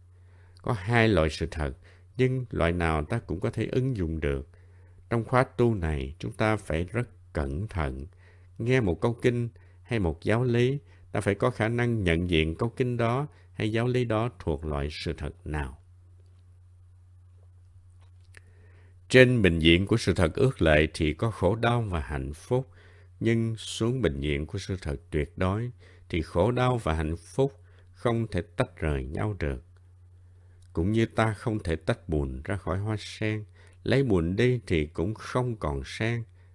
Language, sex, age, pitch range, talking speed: Vietnamese, male, 60-79, 85-115 Hz, 175 wpm